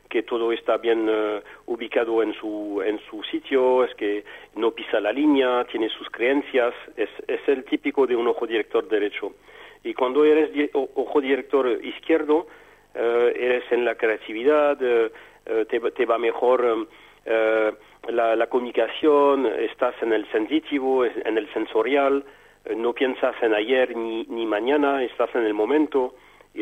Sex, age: male, 40-59